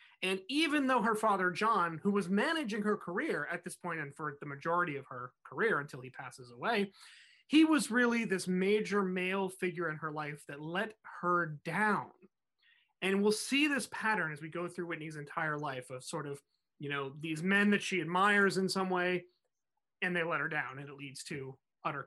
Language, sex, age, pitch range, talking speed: English, male, 30-49, 165-220 Hz, 200 wpm